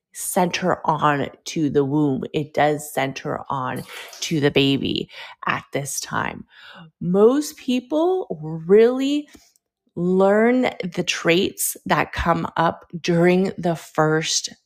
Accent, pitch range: American, 160-225 Hz